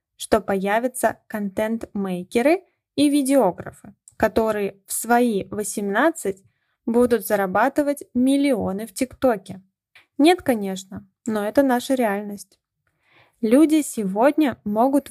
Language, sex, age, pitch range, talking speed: Russian, female, 20-39, 205-270 Hz, 90 wpm